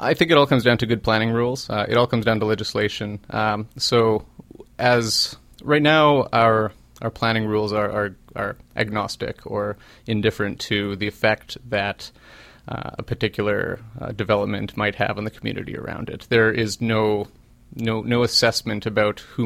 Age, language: 30-49, English